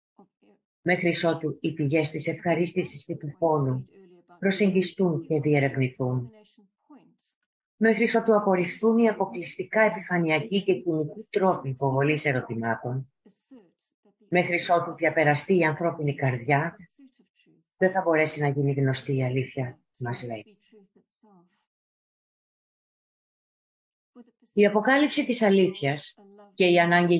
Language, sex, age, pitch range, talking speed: Greek, female, 30-49, 145-205 Hz, 100 wpm